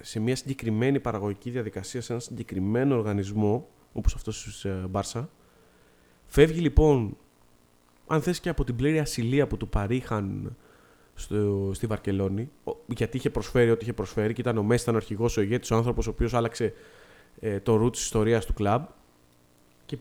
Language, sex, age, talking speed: Greek, male, 20-39, 160 wpm